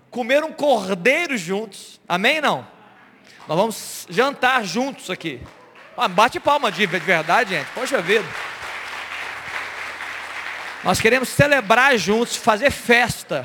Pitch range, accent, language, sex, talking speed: 175-230 Hz, Brazilian, Portuguese, male, 110 wpm